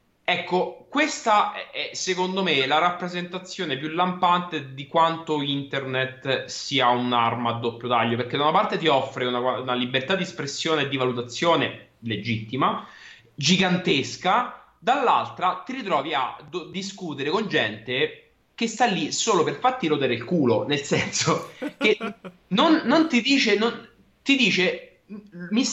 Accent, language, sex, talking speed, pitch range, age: native, Italian, male, 140 wpm, 140-200 Hz, 20-39